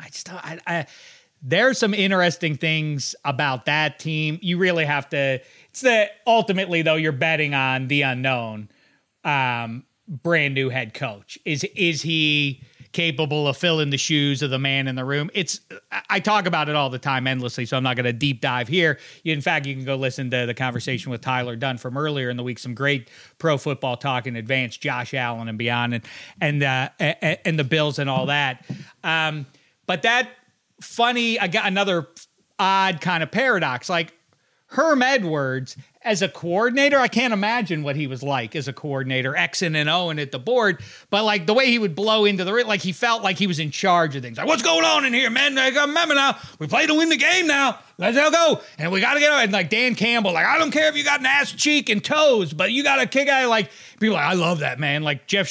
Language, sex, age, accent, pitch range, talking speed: English, male, 30-49, American, 135-210 Hz, 230 wpm